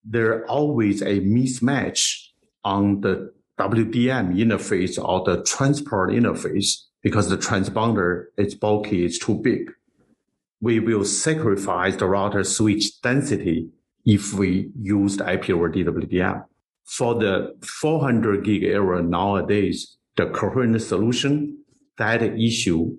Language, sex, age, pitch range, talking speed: English, male, 50-69, 95-115 Hz, 115 wpm